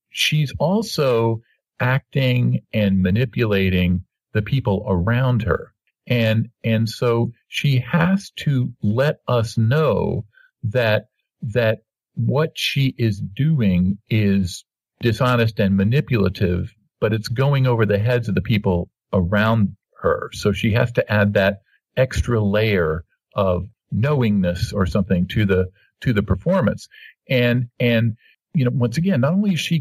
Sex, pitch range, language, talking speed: male, 100-135 Hz, English, 135 wpm